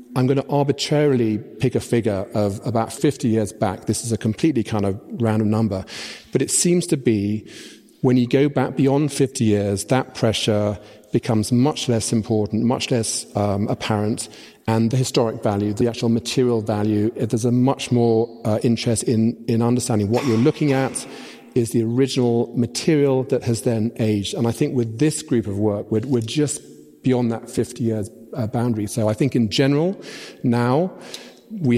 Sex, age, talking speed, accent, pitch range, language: male, 40-59, 180 wpm, British, 110-130 Hz, English